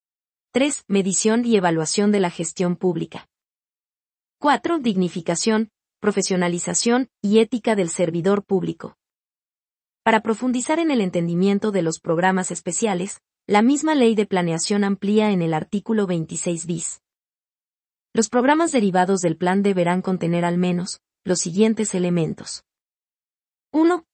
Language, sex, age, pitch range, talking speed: Spanish, female, 30-49, 175-215 Hz, 120 wpm